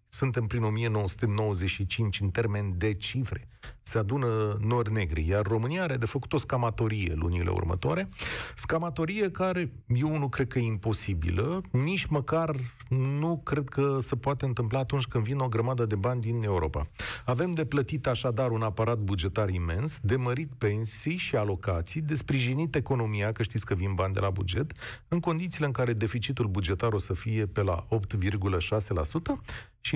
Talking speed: 160 wpm